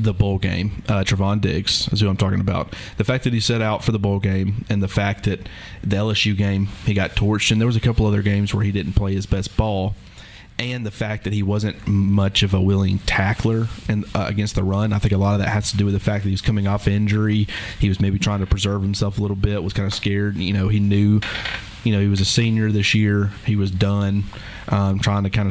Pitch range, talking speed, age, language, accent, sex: 100-110 Hz, 265 wpm, 30-49, English, American, male